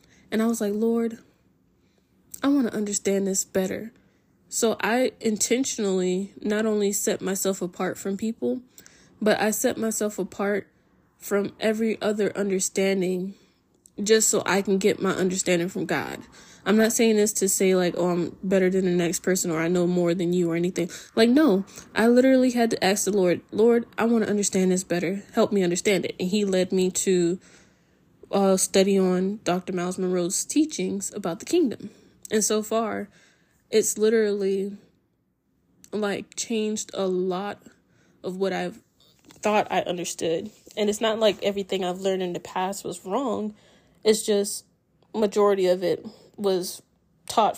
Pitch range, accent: 185-220 Hz, American